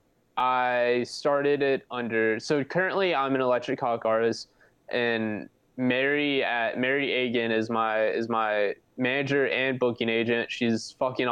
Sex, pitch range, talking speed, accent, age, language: male, 115-135 Hz, 140 wpm, American, 20-39, English